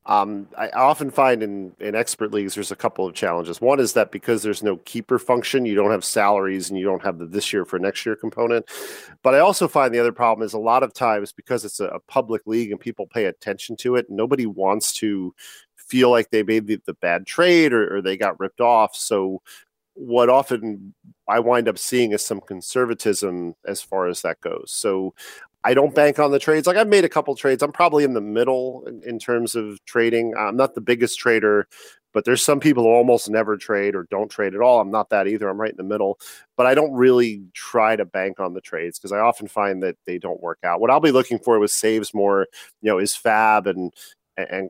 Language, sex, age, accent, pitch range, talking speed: English, male, 40-59, American, 100-125 Hz, 235 wpm